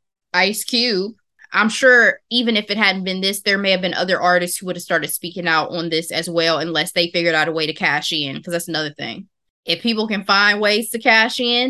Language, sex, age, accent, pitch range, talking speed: English, female, 20-39, American, 175-225 Hz, 240 wpm